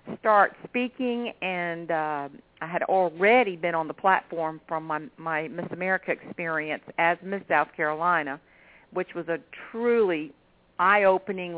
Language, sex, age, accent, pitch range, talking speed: English, female, 50-69, American, 170-205 Hz, 135 wpm